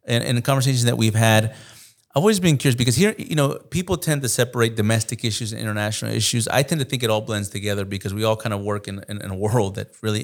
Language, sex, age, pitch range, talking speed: English, male, 30-49, 105-125 Hz, 270 wpm